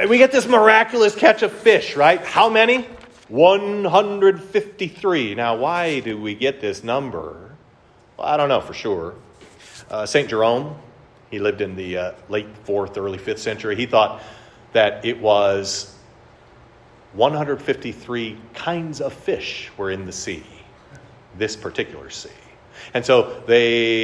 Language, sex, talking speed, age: English, male, 140 wpm, 40-59